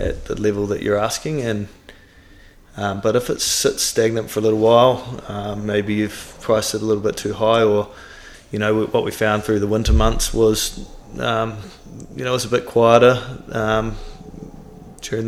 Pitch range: 105-115 Hz